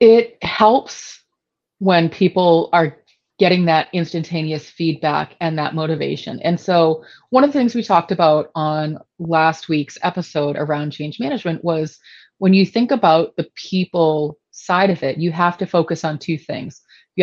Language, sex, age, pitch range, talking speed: English, female, 30-49, 160-190 Hz, 160 wpm